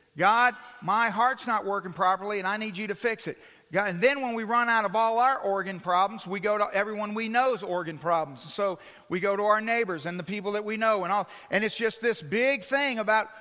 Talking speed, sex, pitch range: 235 wpm, male, 205-265 Hz